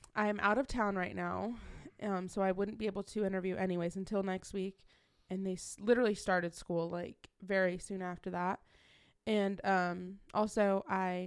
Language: English